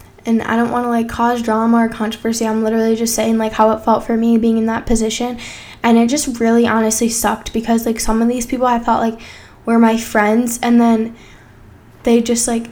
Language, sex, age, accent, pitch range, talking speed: English, female, 10-29, American, 225-240 Hz, 220 wpm